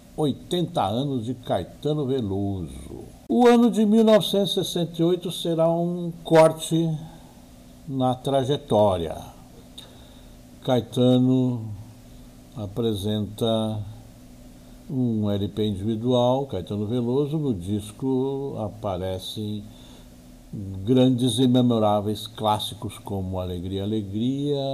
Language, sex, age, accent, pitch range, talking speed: Portuguese, male, 60-79, Brazilian, 100-130 Hz, 75 wpm